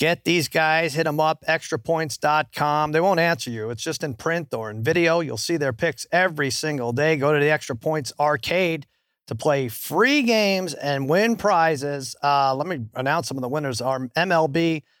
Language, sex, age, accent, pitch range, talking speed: English, male, 50-69, American, 135-165 Hz, 190 wpm